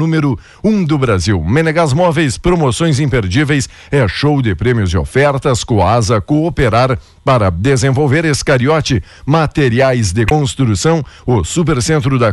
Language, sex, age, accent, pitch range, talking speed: Portuguese, male, 60-79, Brazilian, 120-155 Hz, 125 wpm